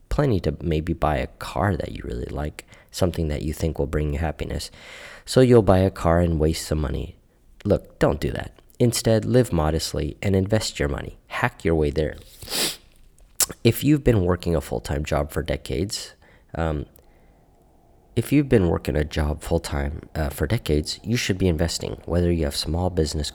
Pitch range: 75-95 Hz